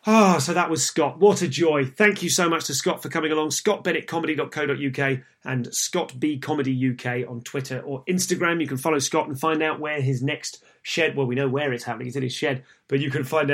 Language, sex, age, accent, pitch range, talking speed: English, male, 30-49, British, 130-160 Hz, 220 wpm